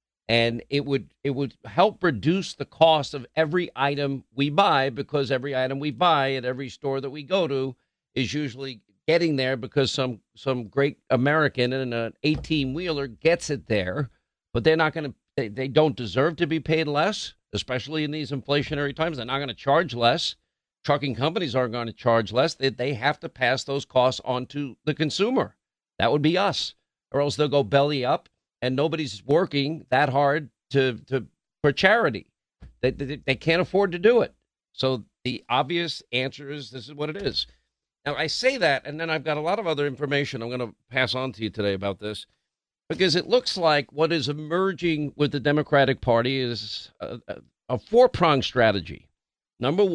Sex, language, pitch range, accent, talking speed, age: male, English, 130-155 Hz, American, 190 wpm, 50-69